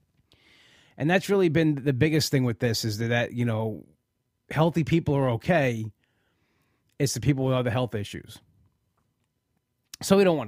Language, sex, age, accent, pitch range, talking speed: English, male, 30-49, American, 120-155 Hz, 160 wpm